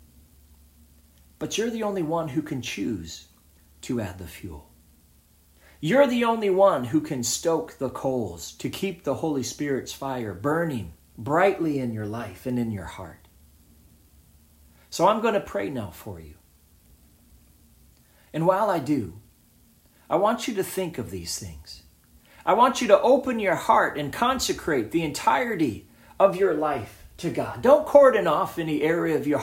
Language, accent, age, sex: English, American, 40-59, male